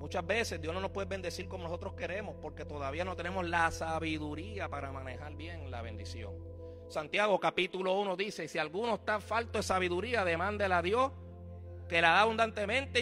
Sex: male